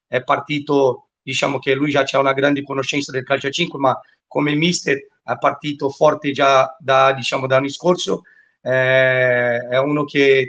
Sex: male